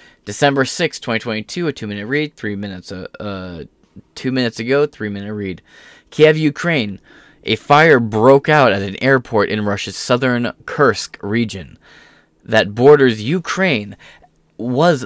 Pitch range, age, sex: 100-135 Hz, 20-39, male